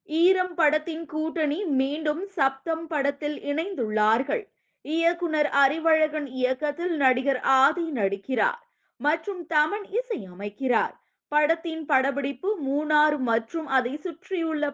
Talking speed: 85 wpm